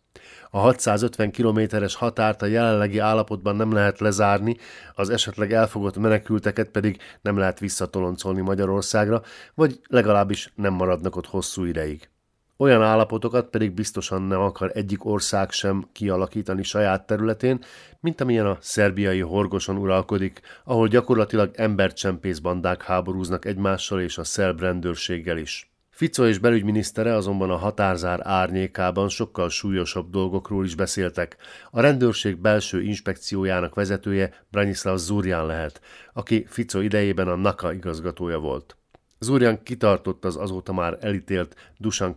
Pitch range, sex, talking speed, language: 95-110 Hz, male, 125 wpm, Hungarian